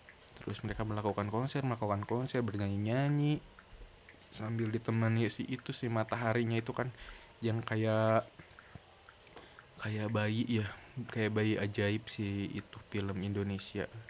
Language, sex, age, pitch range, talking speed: Indonesian, male, 20-39, 105-130 Hz, 120 wpm